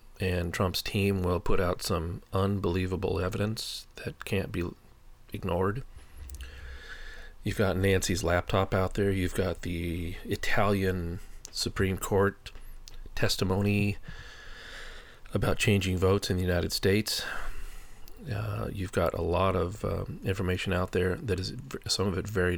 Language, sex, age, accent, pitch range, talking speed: English, male, 40-59, American, 95-110 Hz, 130 wpm